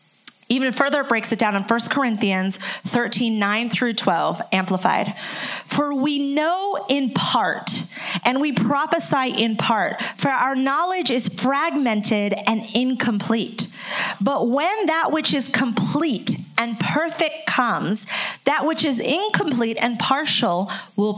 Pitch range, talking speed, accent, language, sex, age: 205-260 Hz, 135 wpm, American, English, female, 40-59